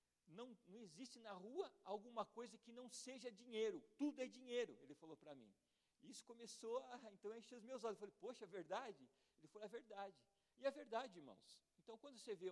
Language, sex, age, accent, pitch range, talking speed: Portuguese, male, 50-69, Brazilian, 195-245 Hz, 205 wpm